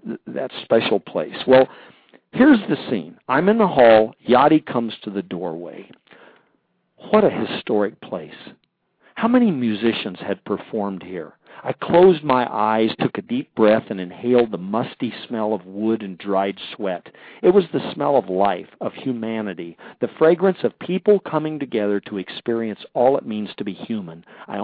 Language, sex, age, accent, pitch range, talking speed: English, male, 50-69, American, 105-155 Hz, 165 wpm